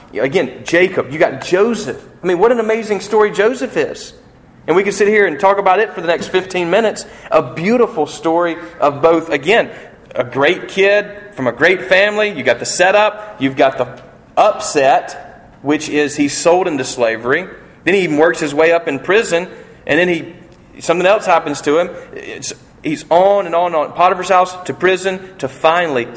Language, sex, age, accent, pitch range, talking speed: English, male, 40-59, American, 135-210 Hz, 195 wpm